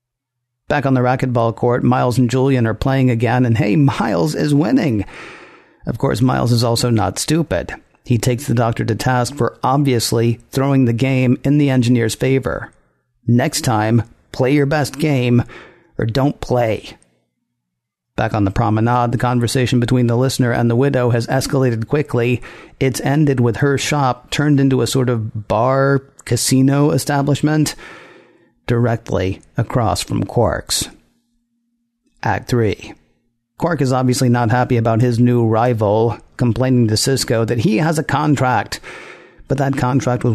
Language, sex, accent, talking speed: English, male, American, 150 wpm